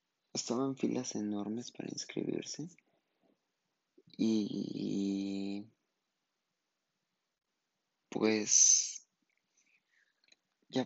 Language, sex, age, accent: Spanish, male, 30-49, Mexican